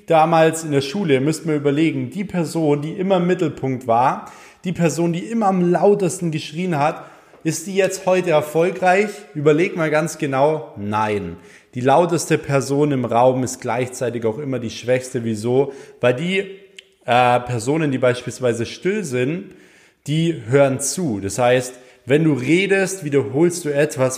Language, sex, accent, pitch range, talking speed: German, male, German, 130-160 Hz, 155 wpm